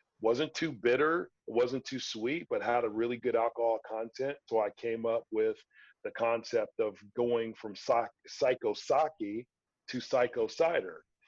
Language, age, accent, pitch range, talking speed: English, 40-59, American, 115-140 Hz, 150 wpm